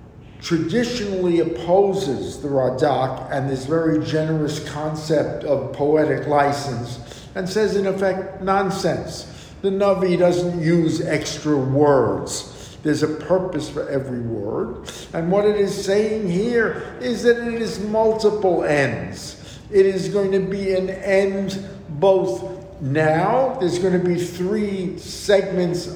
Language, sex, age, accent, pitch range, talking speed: English, male, 50-69, American, 155-195 Hz, 130 wpm